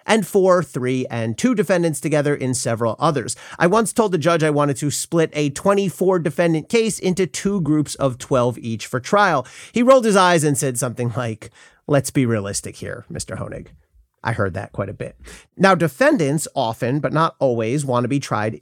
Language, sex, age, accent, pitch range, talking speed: English, male, 40-59, American, 120-180 Hz, 195 wpm